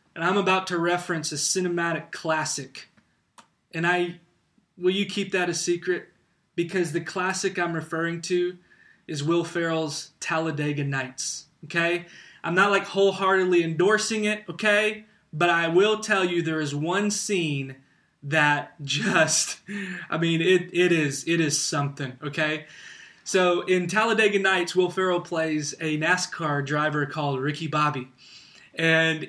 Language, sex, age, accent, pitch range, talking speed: English, male, 20-39, American, 160-200 Hz, 140 wpm